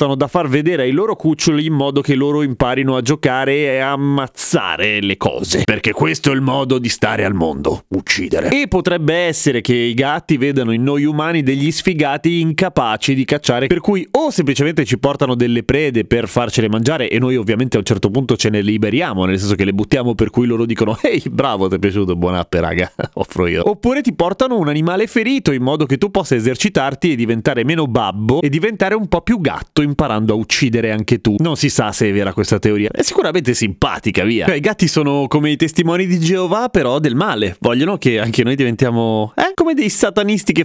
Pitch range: 120-185 Hz